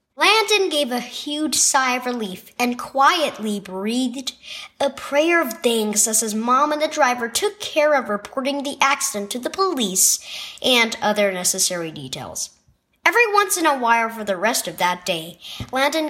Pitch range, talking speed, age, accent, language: 210-320 Hz, 170 wpm, 20-39, American, English